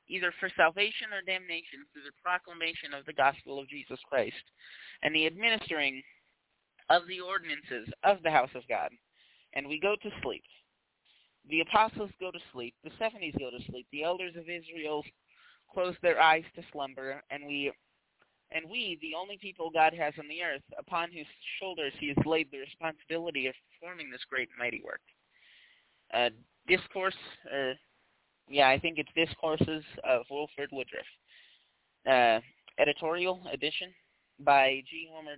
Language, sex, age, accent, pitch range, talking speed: English, male, 30-49, American, 145-185 Hz, 160 wpm